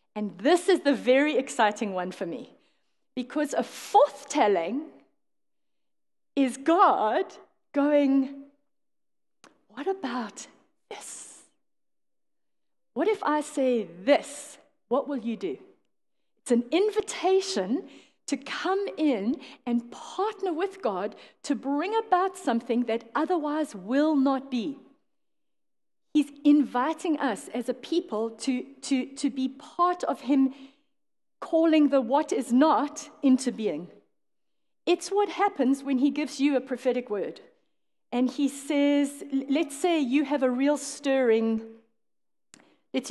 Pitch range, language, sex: 255-310 Hz, English, female